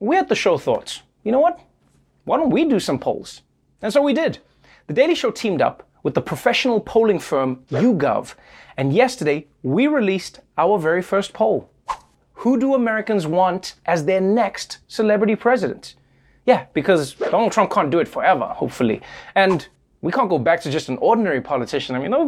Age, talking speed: 30-49, 185 wpm